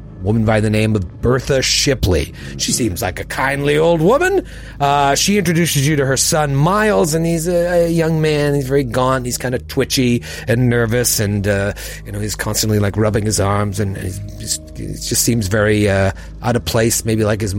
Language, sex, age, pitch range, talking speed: English, male, 30-49, 90-115 Hz, 200 wpm